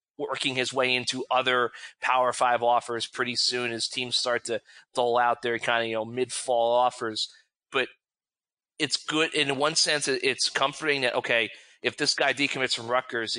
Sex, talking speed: male, 175 wpm